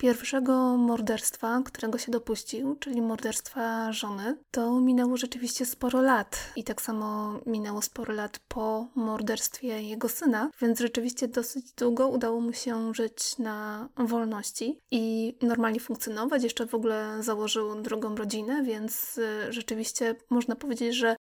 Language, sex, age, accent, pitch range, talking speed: Polish, female, 20-39, native, 220-250 Hz, 130 wpm